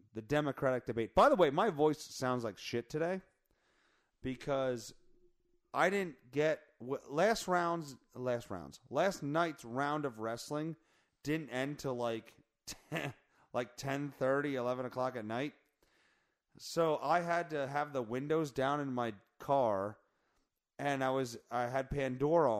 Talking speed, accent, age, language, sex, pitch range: 145 wpm, American, 30-49, English, male, 115-145 Hz